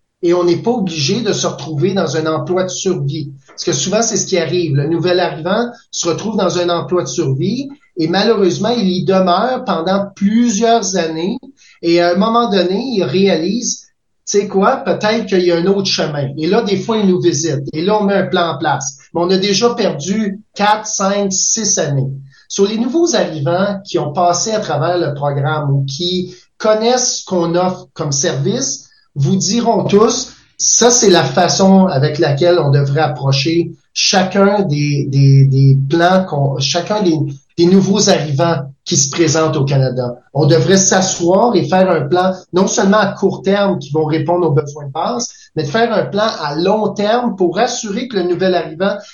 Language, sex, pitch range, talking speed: French, male, 160-205 Hz, 195 wpm